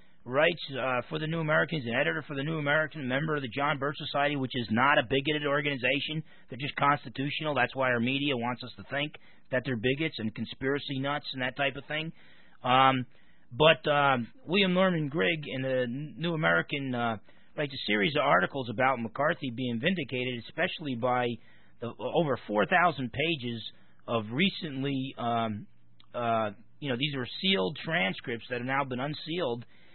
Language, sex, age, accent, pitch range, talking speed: English, male, 40-59, American, 125-160 Hz, 175 wpm